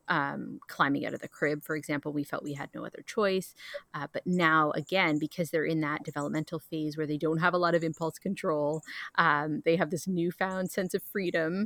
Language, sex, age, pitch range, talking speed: English, female, 30-49, 155-195 Hz, 215 wpm